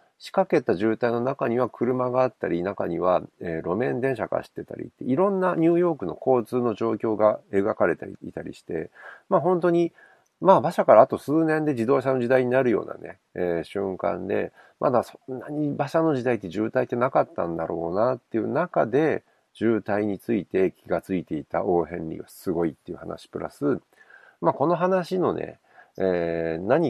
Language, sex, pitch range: Japanese, male, 100-150 Hz